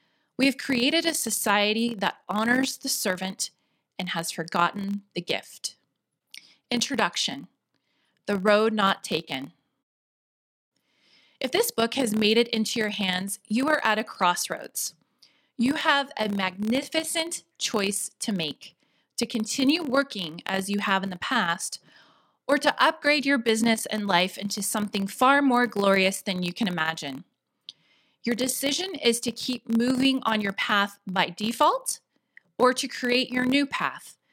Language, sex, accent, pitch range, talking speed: English, female, American, 200-255 Hz, 145 wpm